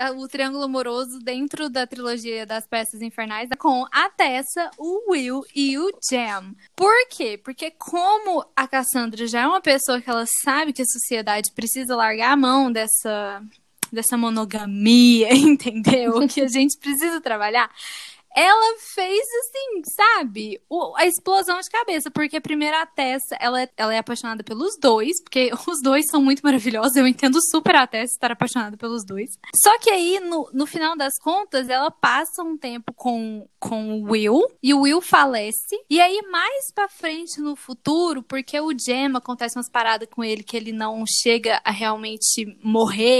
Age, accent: 10-29, Brazilian